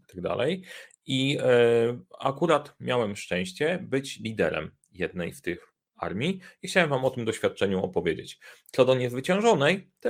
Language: Polish